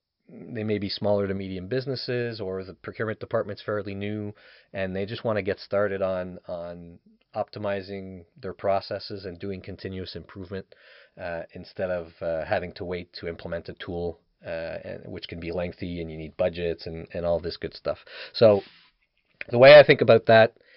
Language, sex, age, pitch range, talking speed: English, male, 30-49, 95-110 Hz, 180 wpm